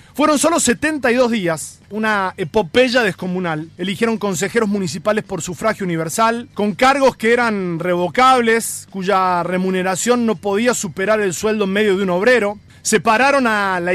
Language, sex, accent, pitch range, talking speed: Spanish, male, Argentinian, 185-240 Hz, 140 wpm